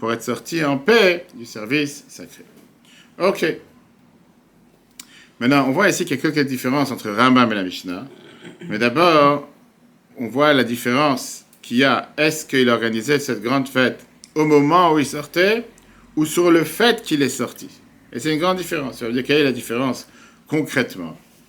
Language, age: French, 50-69